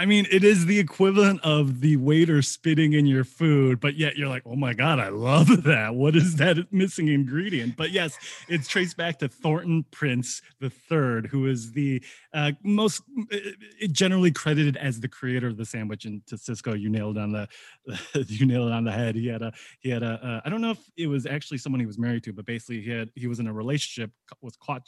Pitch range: 120-160 Hz